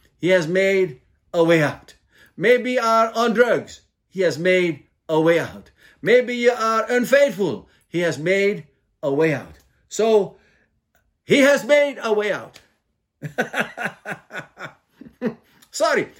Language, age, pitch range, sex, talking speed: English, 50-69, 140-200 Hz, male, 130 wpm